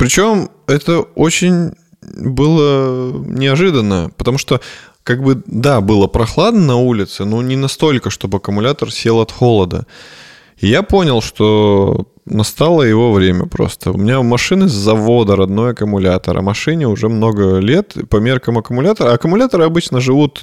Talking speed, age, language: 140 wpm, 20-39, Russian